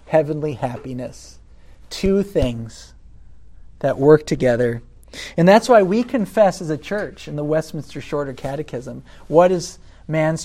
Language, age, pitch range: English, 40-59, 125-170 Hz